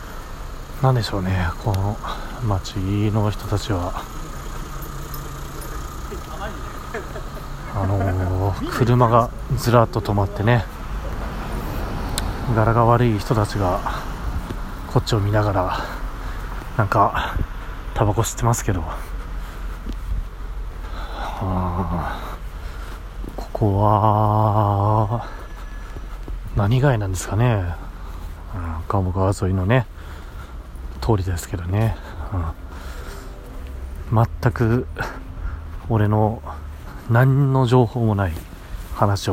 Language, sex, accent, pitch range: Japanese, male, native, 85-110 Hz